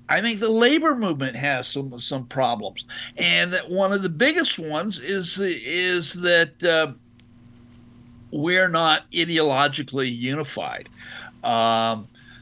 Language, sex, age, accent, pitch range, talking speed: English, male, 50-69, American, 140-185 Hz, 120 wpm